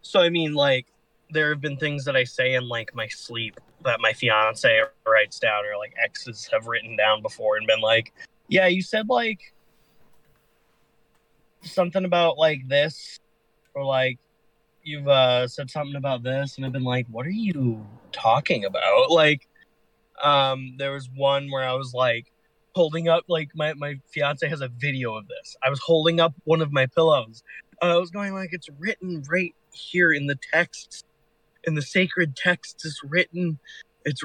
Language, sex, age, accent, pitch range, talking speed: English, male, 20-39, American, 130-165 Hz, 180 wpm